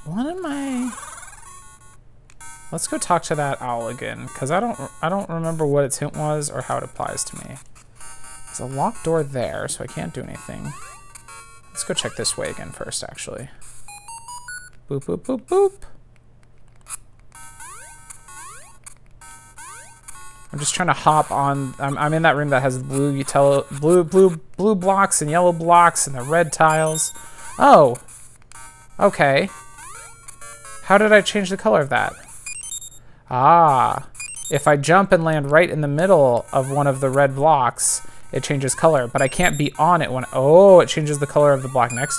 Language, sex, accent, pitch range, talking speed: English, male, American, 125-175 Hz, 170 wpm